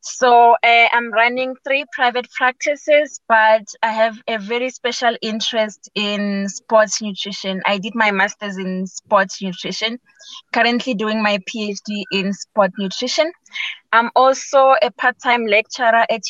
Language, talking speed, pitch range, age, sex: English, 135 wpm, 205-245 Hz, 20-39, female